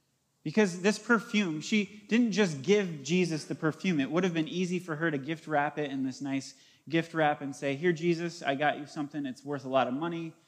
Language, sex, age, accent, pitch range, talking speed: English, male, 30-49, American, 145-190 Hz, 230 wpm